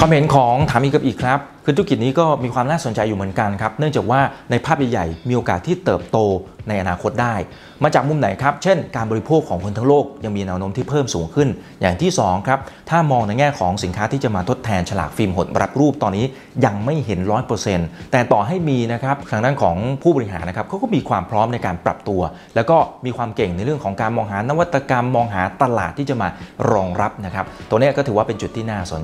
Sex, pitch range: male, 95-135 Hz